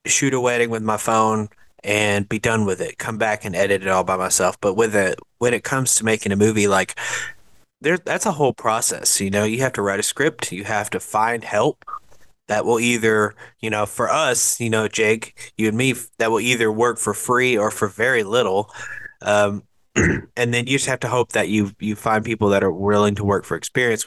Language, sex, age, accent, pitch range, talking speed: English, male, 30-49, American, 105-125 Hz, 225 wpm